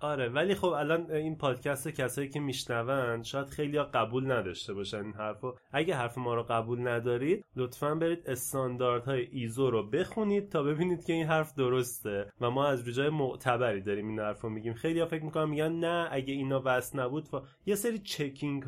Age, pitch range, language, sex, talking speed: 30-49, 115-155 Hz, Persian, male, 180 wpm